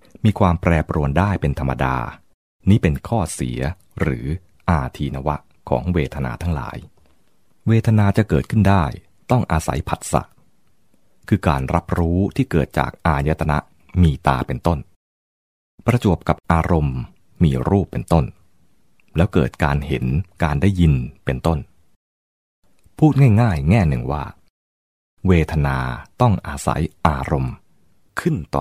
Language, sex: English, male